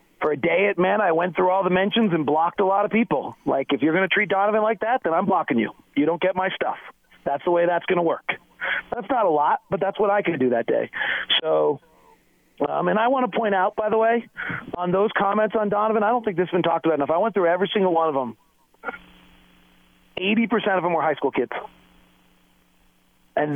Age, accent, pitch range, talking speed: 40-59, American, 155-200 Hz, 240 wpm